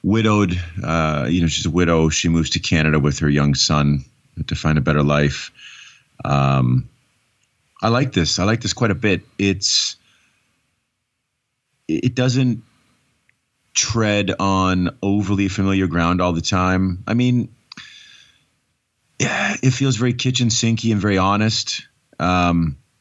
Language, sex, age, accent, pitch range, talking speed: English, male, 30-49, American, 80-95 Hz, 140 wpm